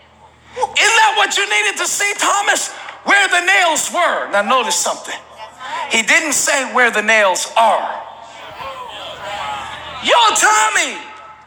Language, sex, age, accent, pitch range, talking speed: English, male, 40-59, American, 320-435 Hz, 125 wpm